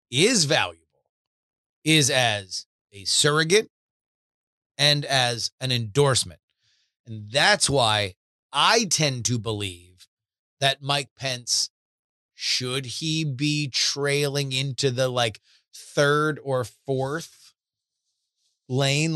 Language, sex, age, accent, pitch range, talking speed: English, male, 30-49, American, 115-150 Hz, 95 wpm